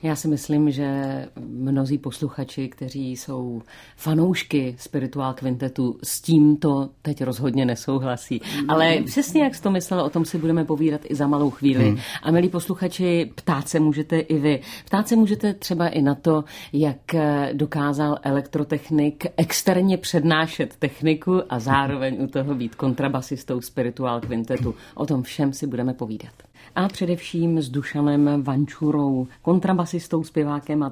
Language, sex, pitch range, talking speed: Czech, female, 135-170 Hz, 145 wpm